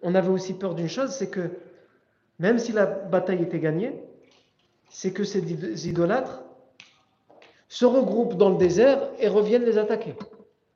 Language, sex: French, male